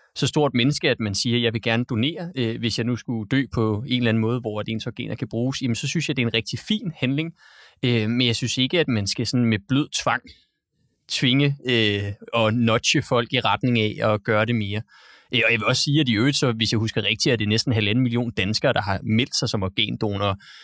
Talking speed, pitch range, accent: 250 wpm, 110-125 Hz, native